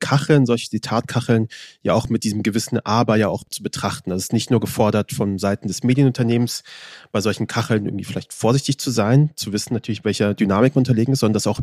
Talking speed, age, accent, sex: 210 wpm, 30-49, German, male